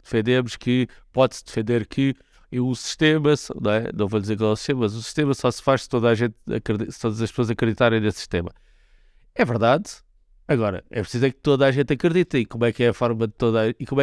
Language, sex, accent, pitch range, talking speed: Portuguese, male, Brazilian, 110-135 Hz, 245 wpm